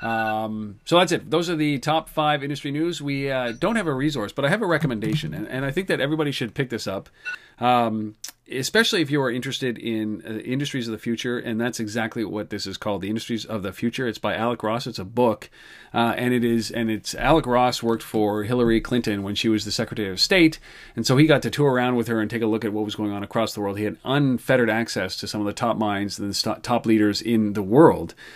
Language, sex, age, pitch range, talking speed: English, male, 40-59, 105-130 Hz, 250 wpm